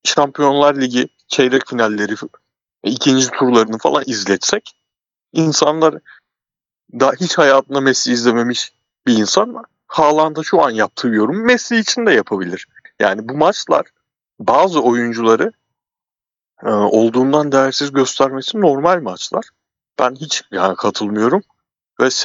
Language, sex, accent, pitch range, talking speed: Turkish, male, native, 105-145 Hz, 110 wpm